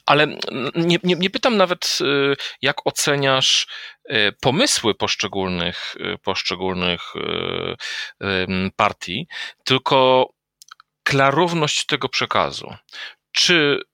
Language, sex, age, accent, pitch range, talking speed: Polish, male, 40-59, native, 100-125 Hz, 75 wpm